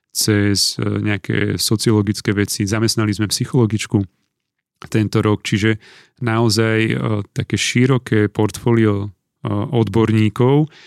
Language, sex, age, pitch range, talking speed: Slovak, male, 30-49, 105-120 Hz, 95 wpm